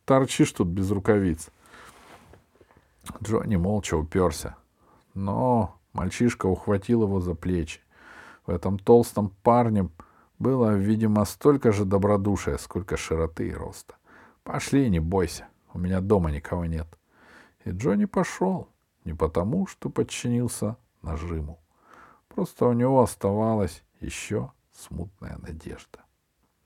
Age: 50-69